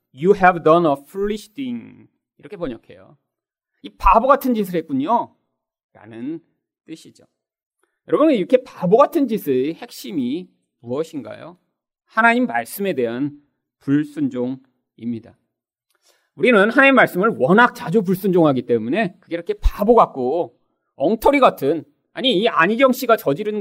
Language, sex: Korean, male